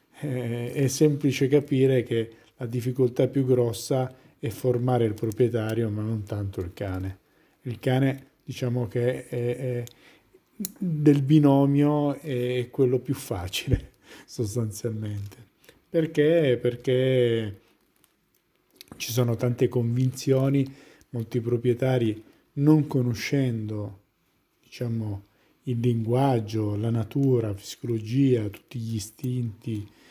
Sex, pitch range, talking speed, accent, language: male, 115-135 Hz, 100 wpm, native, Italian